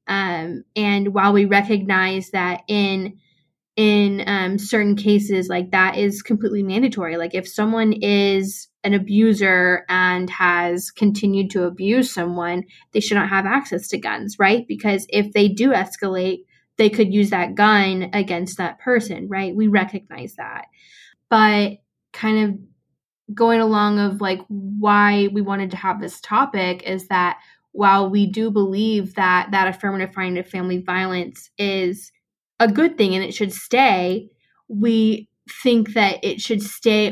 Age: 10-29